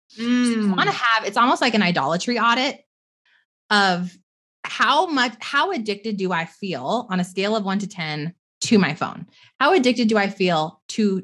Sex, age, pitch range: female, 20-39, 175-225 Hz